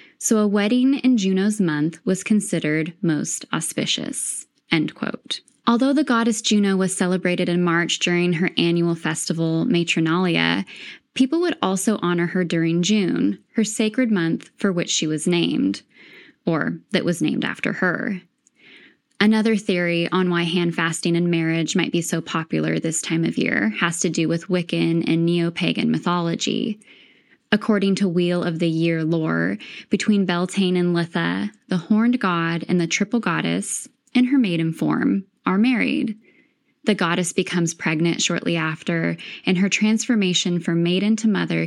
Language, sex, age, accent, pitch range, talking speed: English, female, 10-29, American, 170-215 Hz, 150 wpm